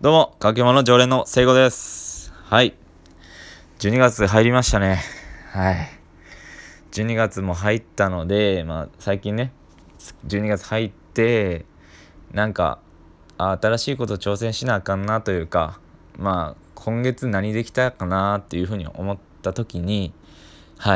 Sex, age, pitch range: male, 20-39, 80-115 Hz